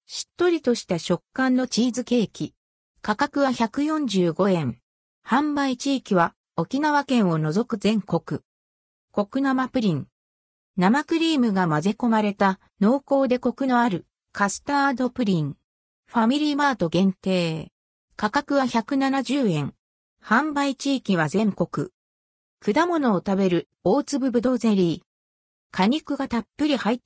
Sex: female